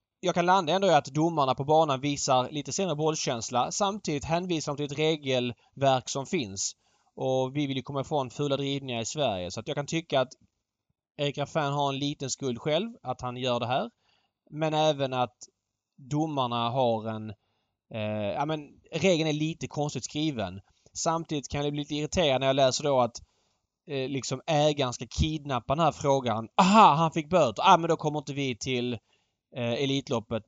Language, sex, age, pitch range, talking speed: Swedish, male, 20-39, 120-150 Hz, 185 wpm